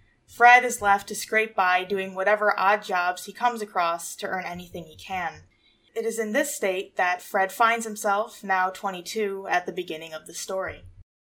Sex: female